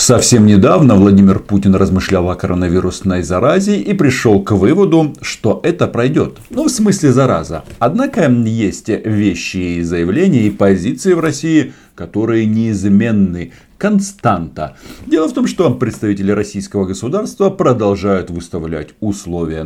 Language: Russian